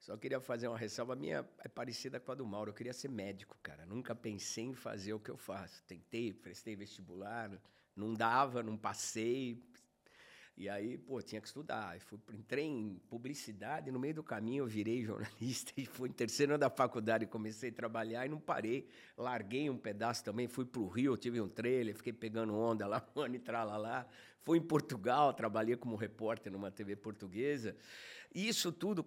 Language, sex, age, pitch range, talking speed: Portuguese, male, 50-69, 110-145 Hz, 190 wpm